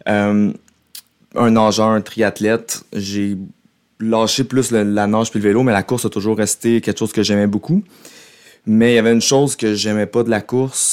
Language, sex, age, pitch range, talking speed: French, male, 30-49, 100-115 Hz, 205 wpm